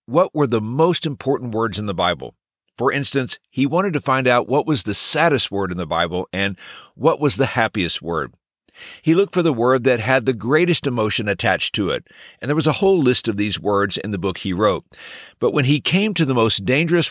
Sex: male